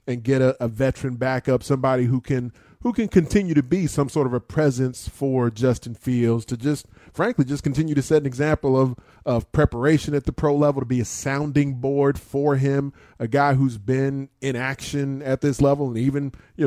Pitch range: 120-140 Hz